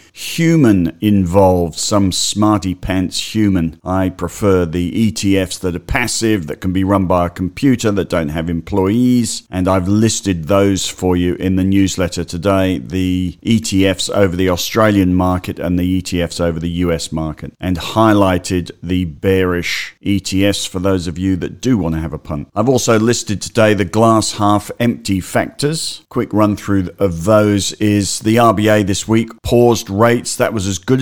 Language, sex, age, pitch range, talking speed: English, male, 50-69, 90-105 Hz, 170 wpm